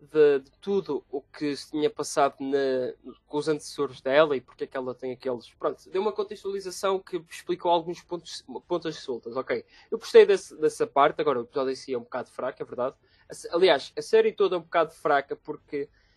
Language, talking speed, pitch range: Portuguese, 205 wpm, 145-195 Hz